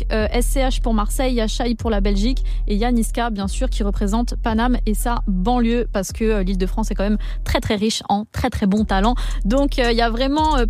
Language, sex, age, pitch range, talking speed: French, female, 20-39, 215-265 Hz, 245 wpm